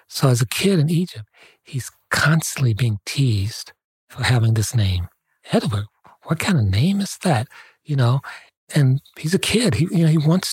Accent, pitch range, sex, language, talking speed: American, 115-145 Hz, male, English, 180 wpm